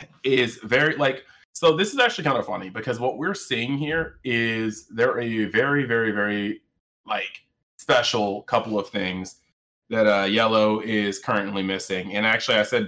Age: 20-39